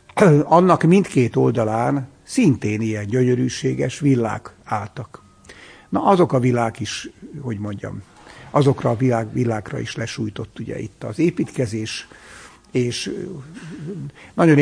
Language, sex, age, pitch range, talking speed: Hungarian, male, 60-79, 115-145 Hz, 110 wpm